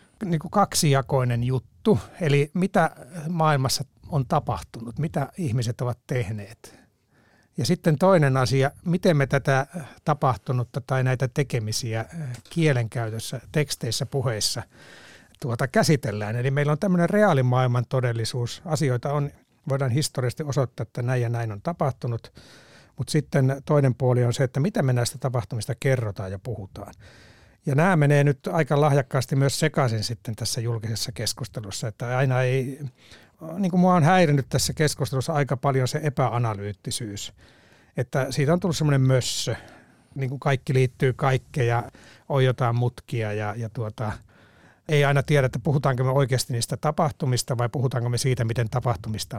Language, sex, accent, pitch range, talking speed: Finnish, male, native, 120-145 Hz, 140 wpm